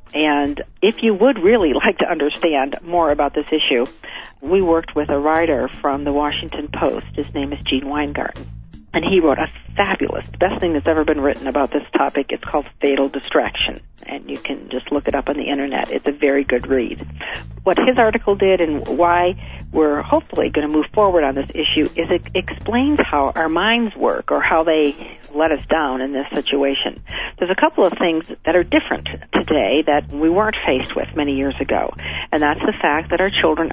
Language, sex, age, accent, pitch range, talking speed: English, female, 50-69, American, 140-175 Hz, 205 wpm